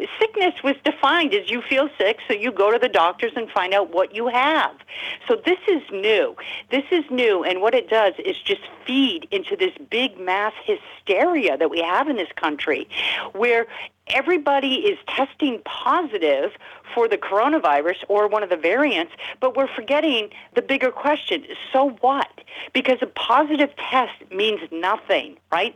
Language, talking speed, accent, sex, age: English, 170 wpm, American, female, 50-69